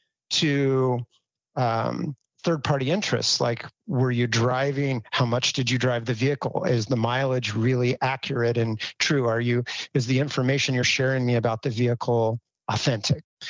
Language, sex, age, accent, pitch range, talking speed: English, male, 40-59, American, 120-140 Hz, 150 wpm